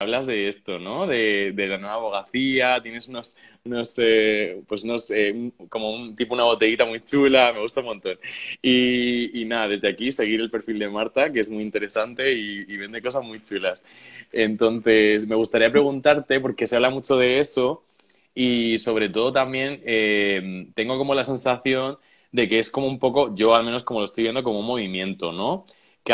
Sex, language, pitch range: male, Spanish, 105-130 Hz